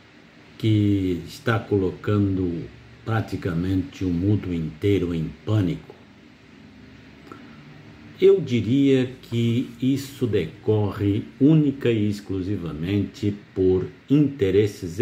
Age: 60-79